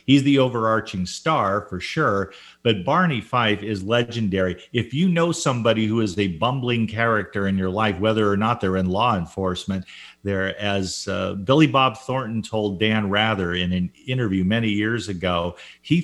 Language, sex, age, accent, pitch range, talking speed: English, male, 50-69, American, 100-130 Hz, 170 wpm